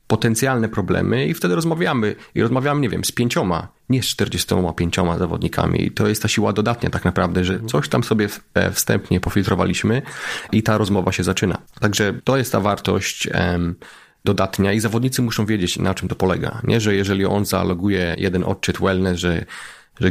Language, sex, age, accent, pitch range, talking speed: Polish, male, 30-49, native, 95-115 Hz, 175 wpm